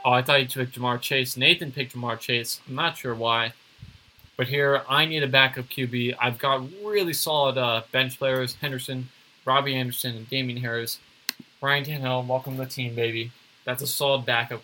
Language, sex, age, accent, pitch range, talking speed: English, male, 20-39, American, 120-135 Hz, 190 wpm